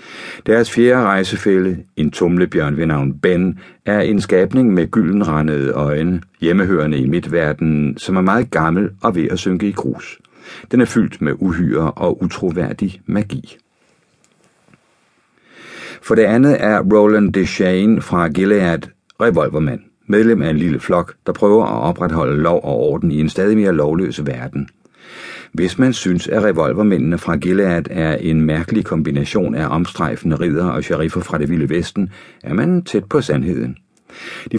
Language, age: Danish, 60-79